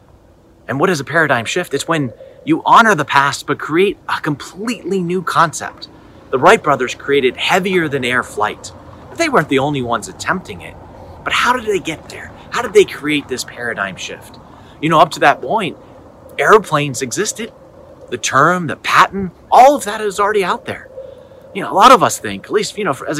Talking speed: 200 wpm